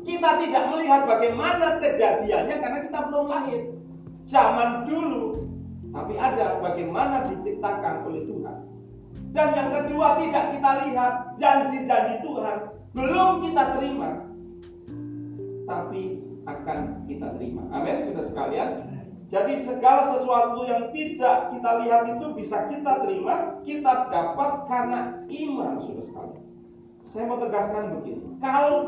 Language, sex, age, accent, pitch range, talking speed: Indonesian, male, 40-59, native, 225-310 Hz, 120 wpm